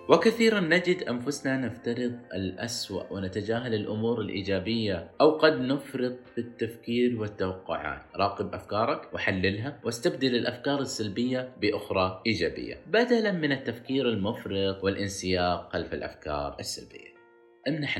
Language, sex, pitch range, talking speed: Arabic, male, 95-125 Hz, 105 wpm